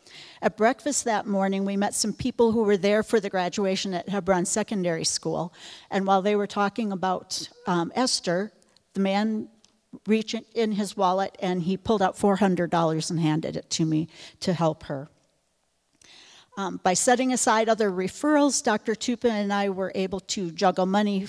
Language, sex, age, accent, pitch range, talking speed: English, female, 50-69, American, 180-215 Hz, 170 wpm